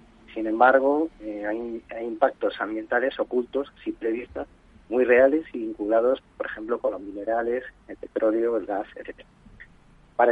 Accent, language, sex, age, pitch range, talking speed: Spanish, Spanish, male, 40-59, 115-140 Hz, 145 wpm